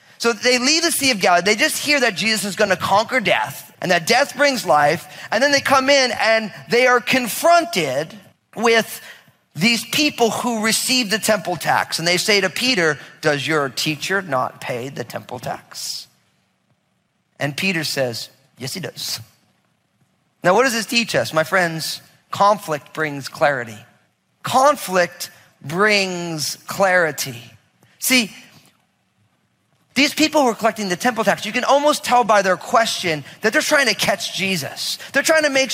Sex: male